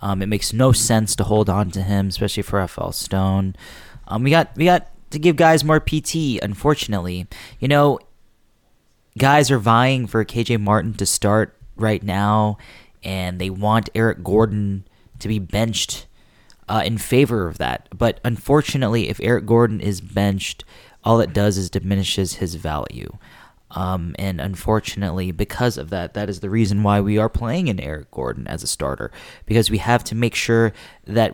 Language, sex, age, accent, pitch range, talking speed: English, male, 20-39, American, 100-125 Hz, 175 wpm